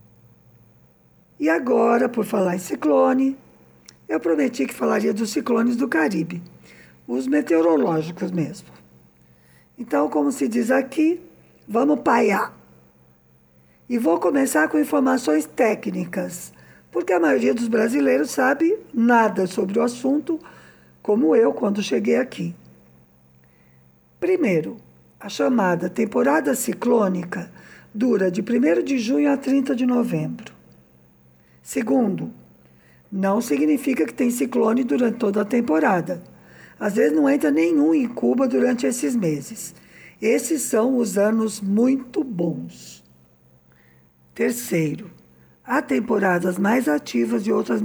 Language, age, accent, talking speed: Portuguese, 50-69, Brazilian, 115 wpm